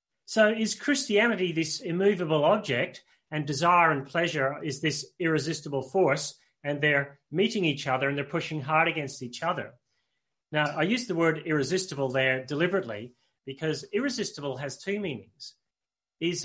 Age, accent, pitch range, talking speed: 40-59, Australian, 135-170 Hz, 145 wpm